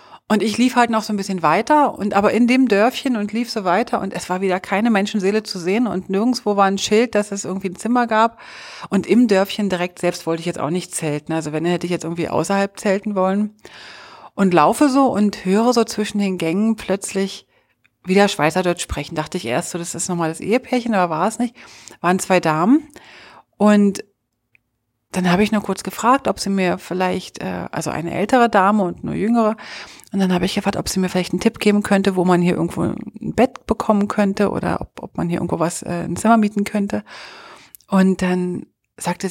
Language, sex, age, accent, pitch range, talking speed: German, female, 40-59, German, 175-210 Hz, 215 wpm